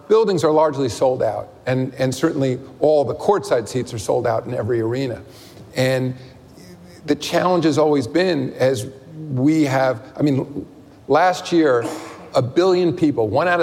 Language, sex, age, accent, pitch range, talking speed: English, male, 40-59, American, 130-160 Hz, 160 wpm